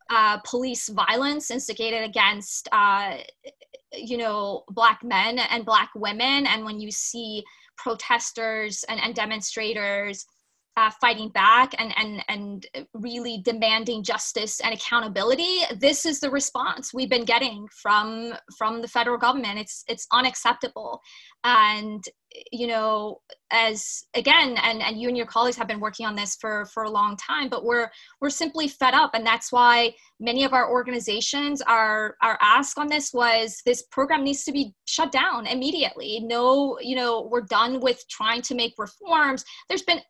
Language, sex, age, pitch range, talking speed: English, female, 20-39, 215-260 Hz, 160 wpm